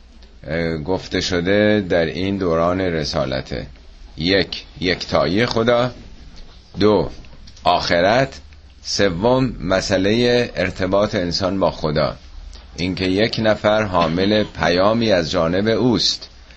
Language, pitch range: Persian, 75-100 Hz